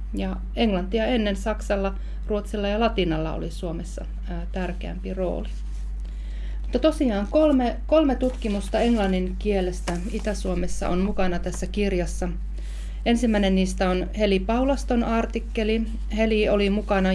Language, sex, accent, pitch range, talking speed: Finnish, female, native, 170-210 Hz, 110 wpm